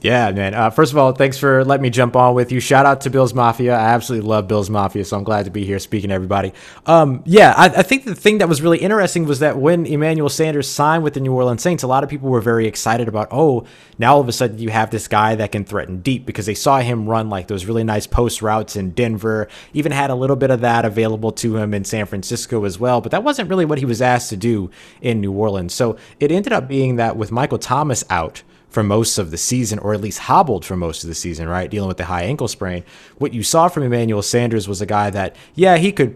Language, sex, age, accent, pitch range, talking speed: English, male, 30-49, American, 100-130 Hz, 270 wpm